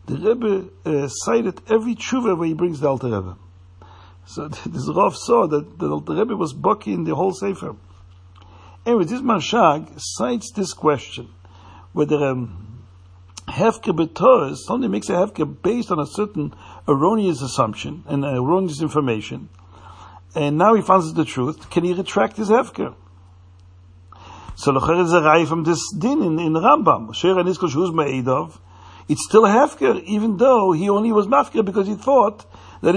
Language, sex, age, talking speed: English, male, 60-79, 145 wpm